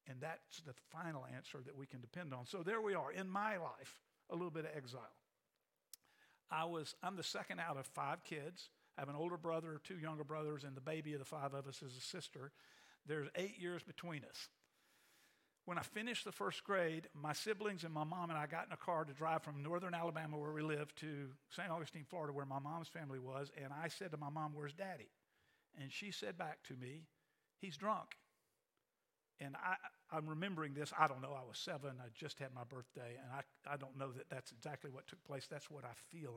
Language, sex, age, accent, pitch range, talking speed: English, male, 50-69, American, 140-170 Hz, 225 wpm